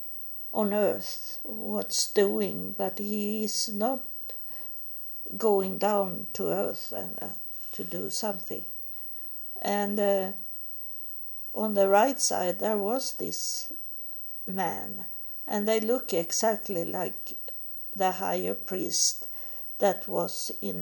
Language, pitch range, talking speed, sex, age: English, 190-225 Hz, 105 wpm, female, 50-69